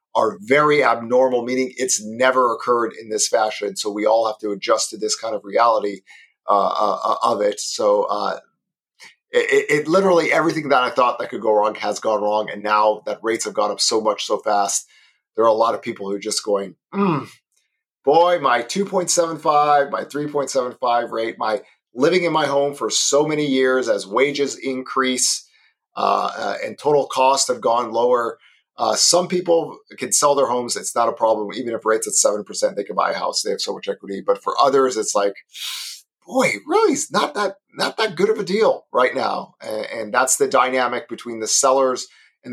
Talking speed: 200 wpm